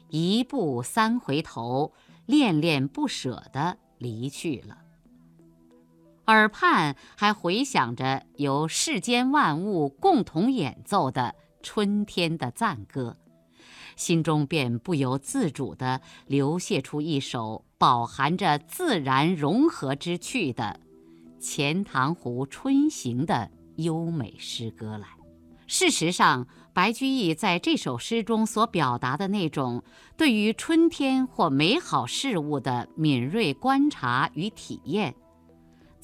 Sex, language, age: female, Chinese, 50-69